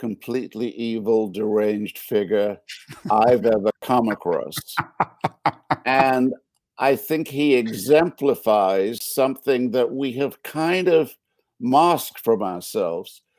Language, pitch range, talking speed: English, 110-140 Hz, 100 wpm